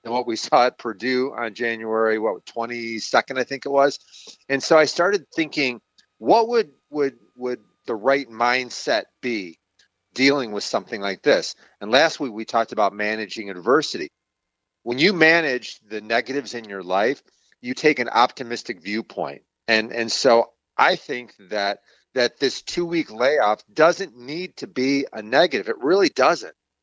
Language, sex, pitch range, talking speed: English, male, 110-150 Hz, 165 wpm